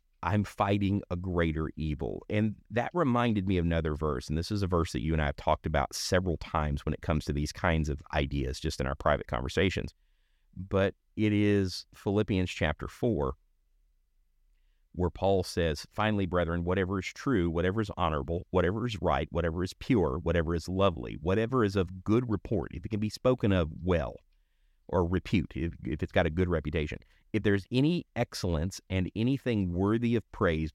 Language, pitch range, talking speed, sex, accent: English, 80-105 Hz, 185 wpm, male, American